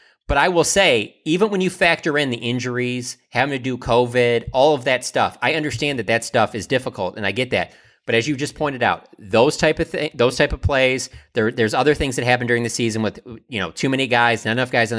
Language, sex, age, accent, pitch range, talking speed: English, male, 30-49, American, 100-125 Hz, 250 wpm